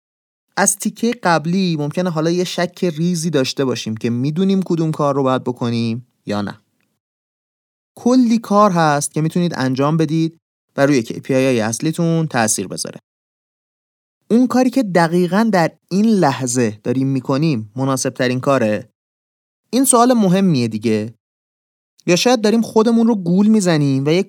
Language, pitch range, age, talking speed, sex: Persian, 125-190 Hz, 30-49, 145 wpm, male